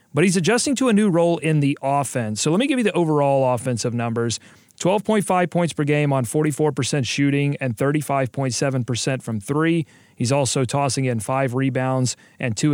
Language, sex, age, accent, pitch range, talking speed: English, male, 40-59, American, 130-170 Hz, 180 wpm